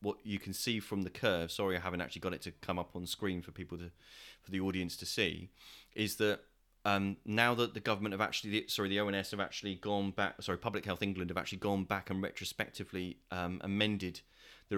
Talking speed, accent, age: 225 wpm, British, 30-49